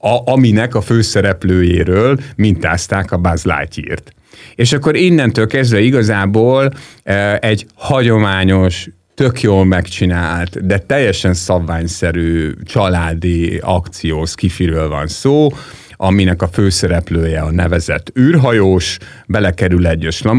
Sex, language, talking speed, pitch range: male, Hungarian, 100 wpm, 85-110 Hz